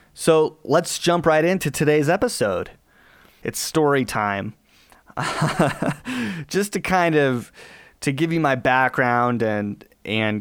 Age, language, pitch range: 30-49, English, 110-135 Hz